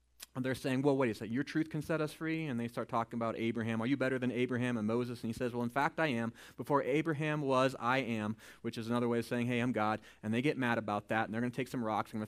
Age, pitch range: 30-49, 115-150 Hz